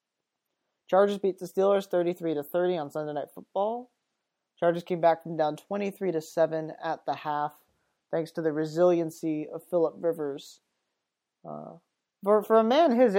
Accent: American